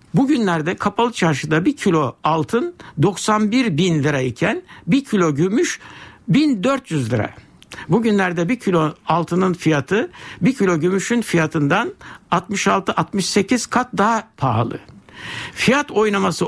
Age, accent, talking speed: 60-79, native, 105 wpm